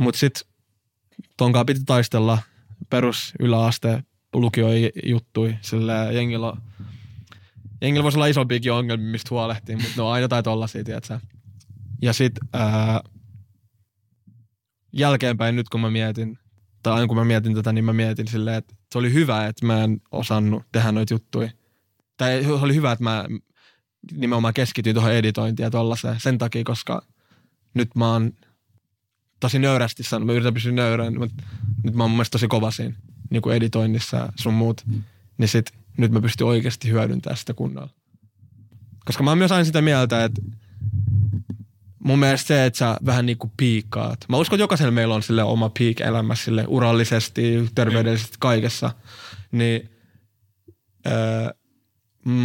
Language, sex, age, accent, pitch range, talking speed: Finnish, male, 20-39, native, 110-120 Hz, 145 wpm